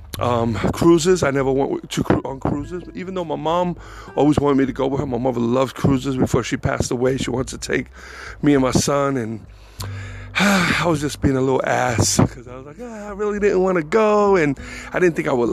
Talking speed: 240 wpm